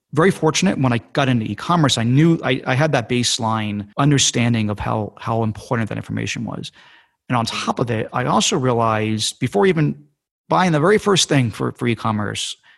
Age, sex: 30-49, male